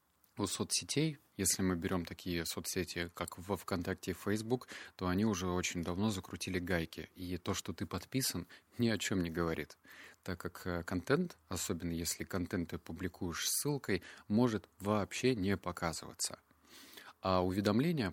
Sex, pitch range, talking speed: male, 85-100 Hz, 145 wpm